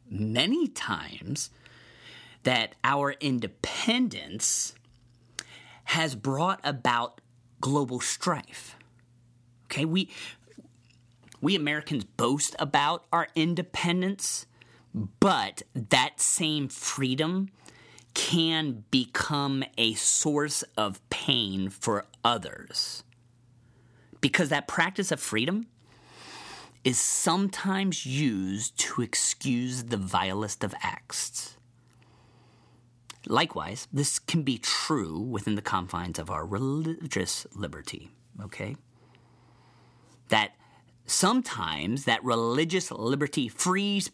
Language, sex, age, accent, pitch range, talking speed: English, male, 30-49, American, 115-155 Hz, 85 wpm